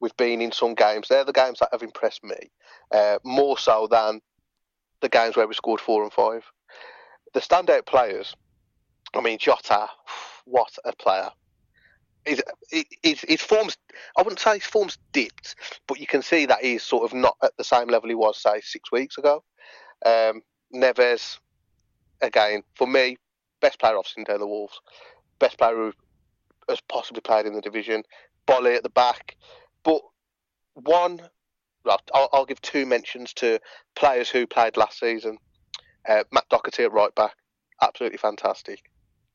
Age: 30-49